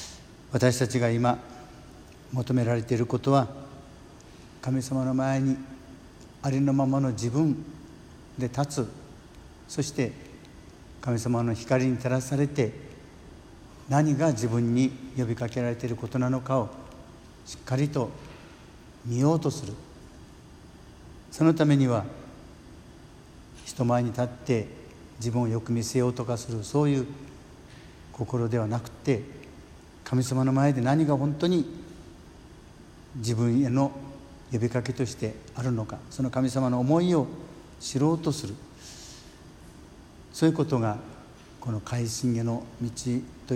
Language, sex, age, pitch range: Japanese, male, 60-79, 115-135 Hz